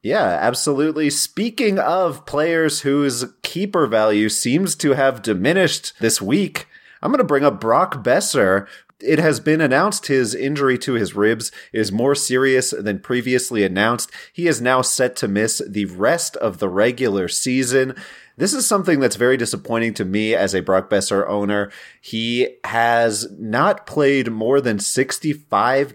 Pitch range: 110-145 Hz